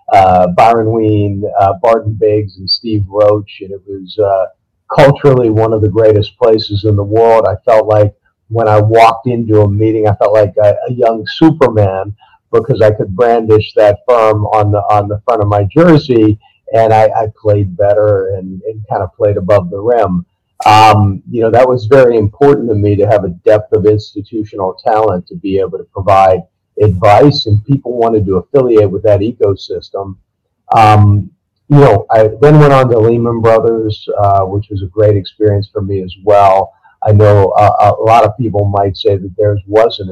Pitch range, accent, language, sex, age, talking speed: 100-110 Hz, American, English, male, 40-59, 190 wpm